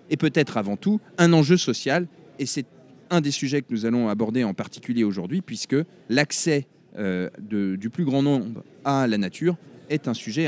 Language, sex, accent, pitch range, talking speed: French, male, French, 125-175 Hz, 185 wpm